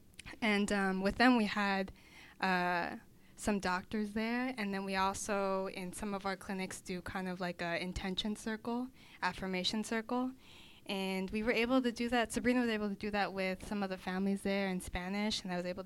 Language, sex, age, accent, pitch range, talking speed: English, female, 10-29, American, 180-210 Hz, 200 wpm